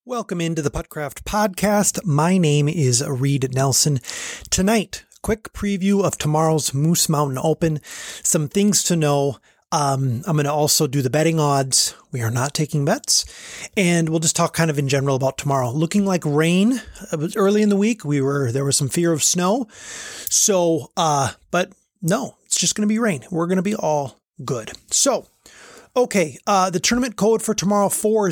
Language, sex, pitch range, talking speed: English, male, 150-205 Hz, 175 wpm